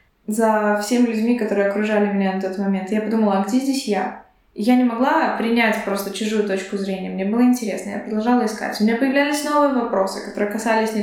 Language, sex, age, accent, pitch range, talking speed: Russian, female, 20-39, native, 205-240 Hz, 200 wpm